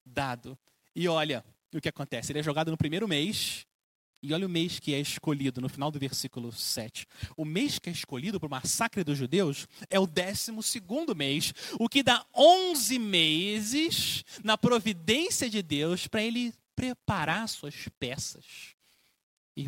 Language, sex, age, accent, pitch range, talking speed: Portuguese, male, 30-49, Brazilian, 135-200 Hz, 165 wpm